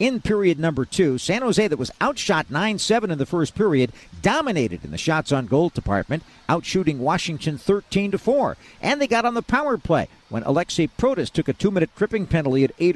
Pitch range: 150-230 Hz